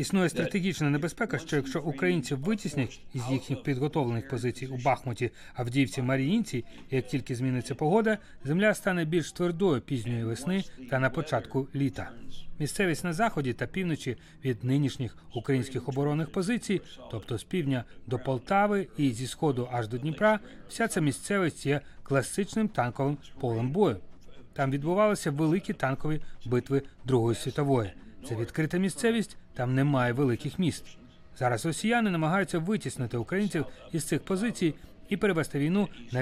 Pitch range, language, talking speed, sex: 125-180 Hz, Ukrainian, 140 wpm, male